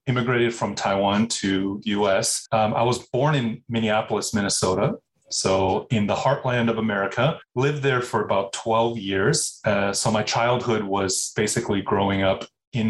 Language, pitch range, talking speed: English, 105-125 Hz, 155 wpm